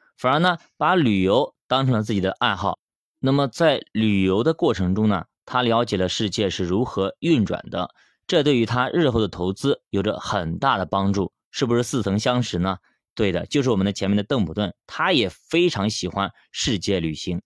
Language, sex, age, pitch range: Chinese, male, 20-39, 95-135 Hz